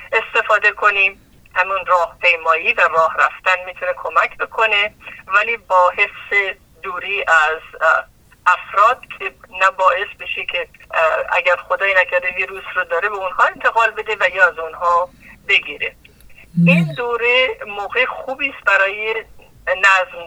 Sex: male